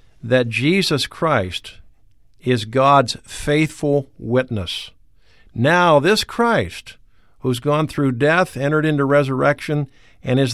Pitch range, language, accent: 115-150 Hz, English, American